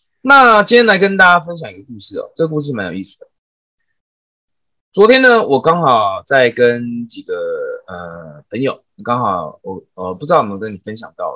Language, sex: Chinese, male